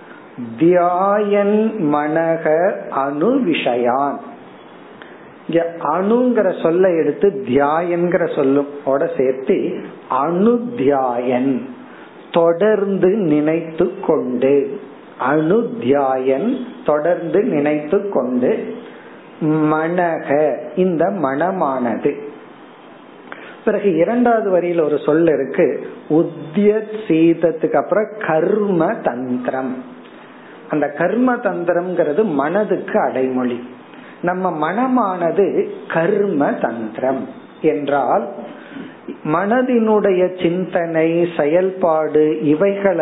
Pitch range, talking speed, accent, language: 150-200 Hz, 50 wpm, native, Tamil